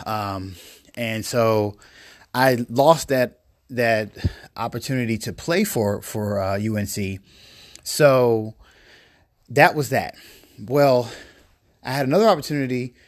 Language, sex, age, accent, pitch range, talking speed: English, male, 30-49, American, 105-140 Hz, 105 wpm